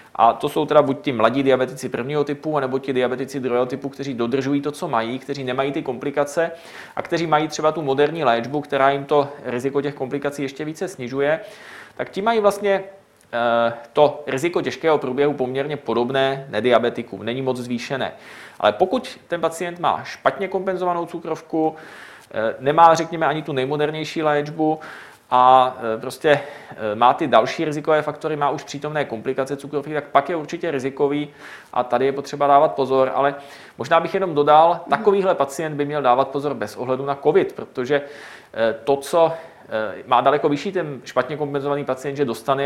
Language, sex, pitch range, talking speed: Czech, male, 130-155 Hz, 165 wpm